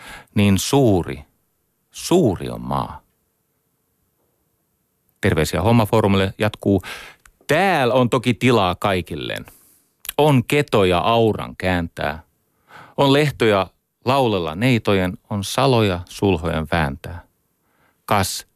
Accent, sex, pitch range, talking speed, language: native, male, 85-115 Hz, 85 wpm, Finnish